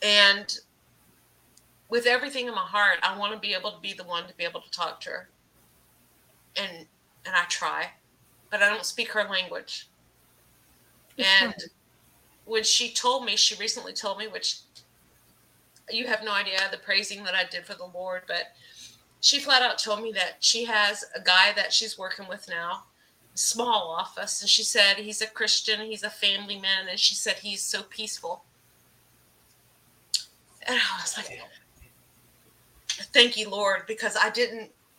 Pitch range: 190-220 Hz